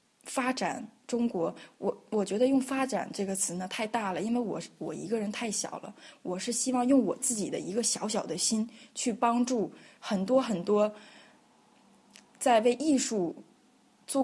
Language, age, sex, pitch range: Chinese, 20-39, female, 200-260 Hz